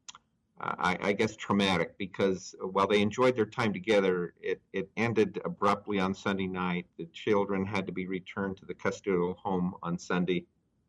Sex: male